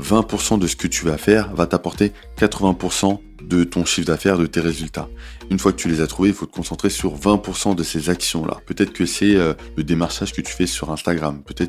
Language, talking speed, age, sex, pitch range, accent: French, 230 wpm, 20-39, male, 80-95 Hz, French